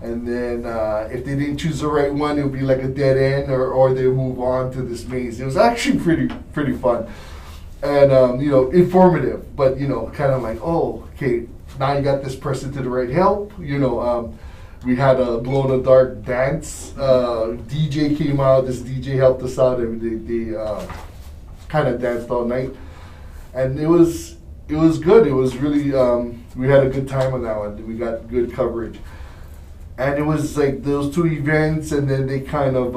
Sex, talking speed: male, 210 wpm